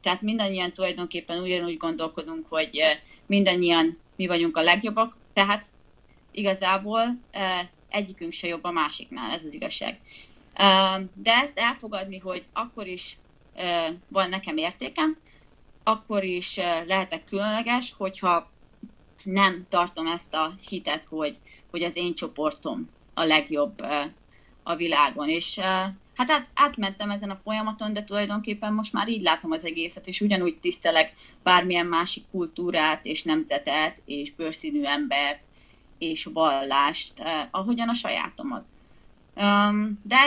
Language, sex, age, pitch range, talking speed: Hungarian, female, 30-49, 165-210 Hz, 120 wpm